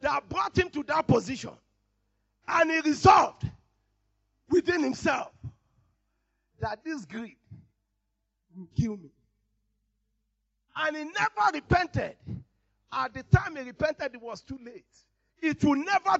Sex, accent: male, Nigerian